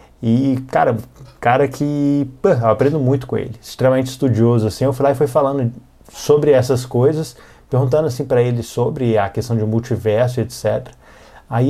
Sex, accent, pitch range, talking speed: male, Brazilian, 115-140 Hz, 170 wpm